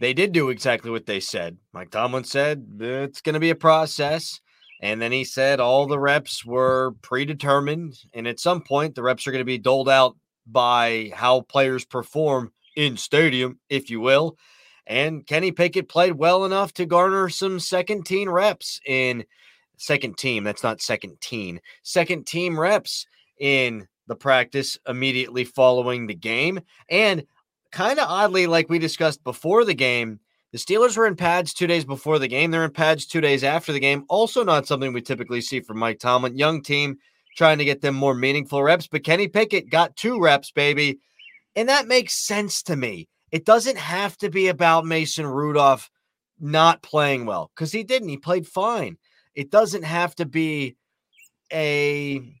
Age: 30-49